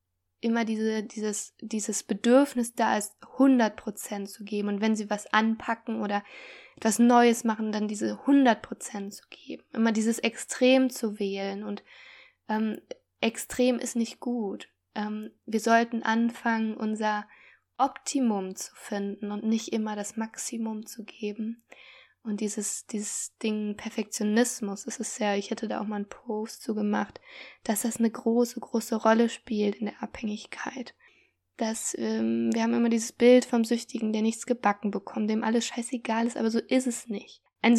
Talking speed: 160 wpm